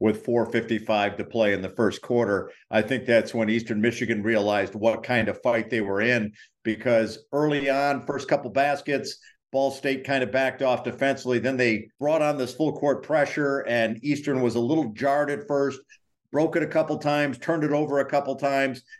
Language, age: English, 50-69